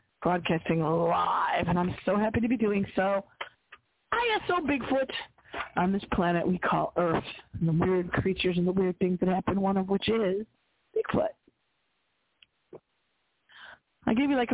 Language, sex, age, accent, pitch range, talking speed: English, female, 40-59, American, 180-240 Hz, 160 wpm